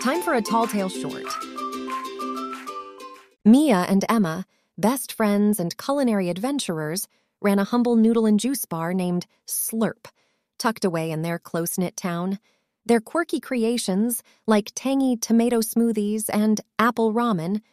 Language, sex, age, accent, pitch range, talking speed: English, female, 30-49, American, 190-245 Hz, 130 wpm